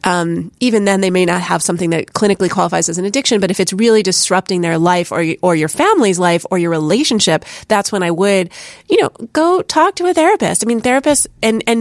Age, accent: 30-49, American